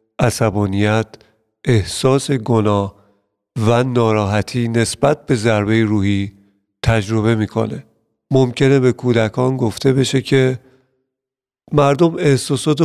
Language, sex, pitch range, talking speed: Persian, male, 115-145 Hz, 90 wpm